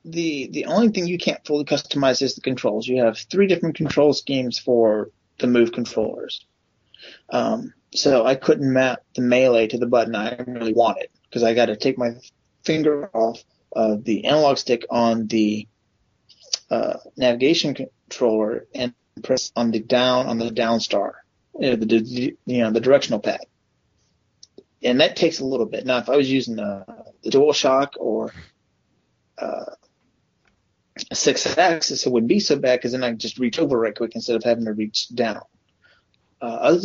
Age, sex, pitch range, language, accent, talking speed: 30-49, male, 115-145 Hz, English, American, 180 wpm